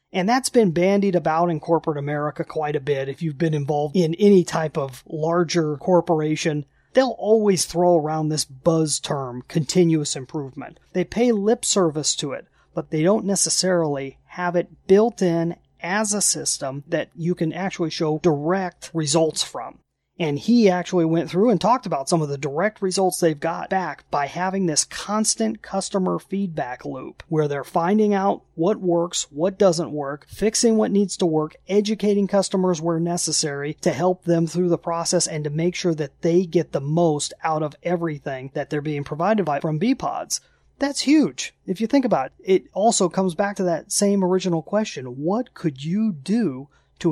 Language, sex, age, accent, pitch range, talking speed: English, male, 30-49, American, 155-195 Hz, 180 wpm